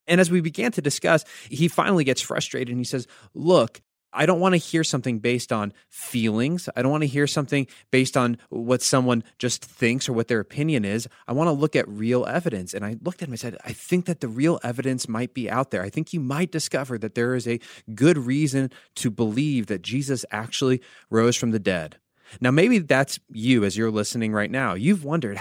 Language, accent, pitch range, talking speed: English, American, 115-145 Hz, 225 wpm